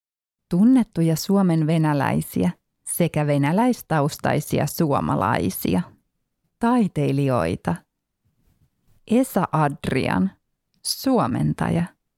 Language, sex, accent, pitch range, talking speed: Finnish, female, native, 140-200 Hz, 50 wpm